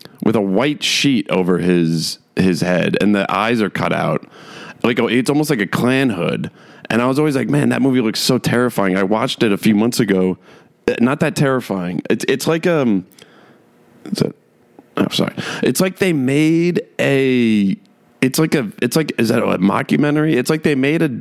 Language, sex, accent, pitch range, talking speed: English, male, American, 95-130 Hz, 190 wpm